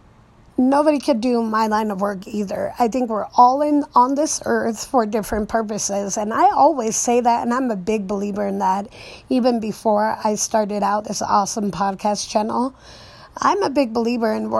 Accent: American